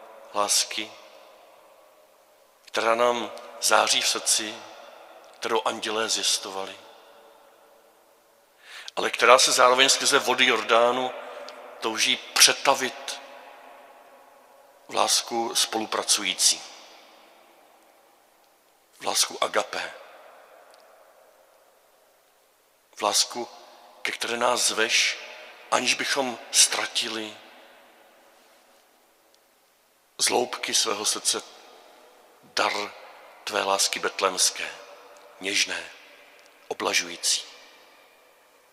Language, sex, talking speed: Czech, male, 65 wpm